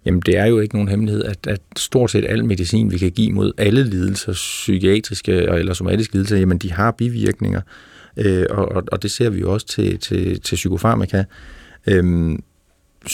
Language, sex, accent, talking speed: Danish, male, native, 185 wpm